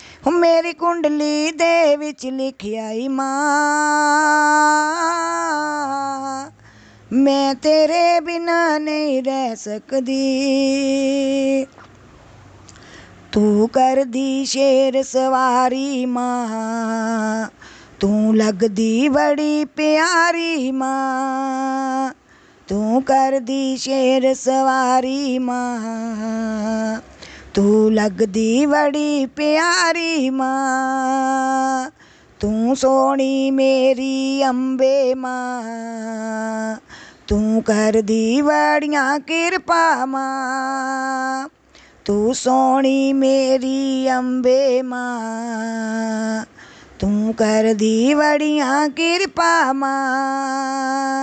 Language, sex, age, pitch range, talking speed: Hindi, female, 20-39, 245-285 Hz, 55 wpm